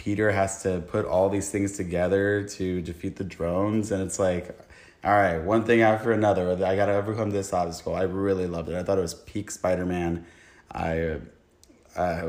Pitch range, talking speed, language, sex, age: 95-115 Hz, 195 wpm, English, male, 20-39